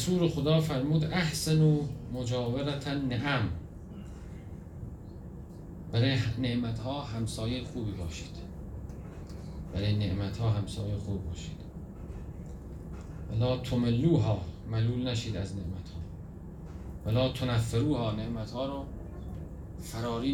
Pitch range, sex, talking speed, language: 90-125 Hz, male, 95 wpm, Persian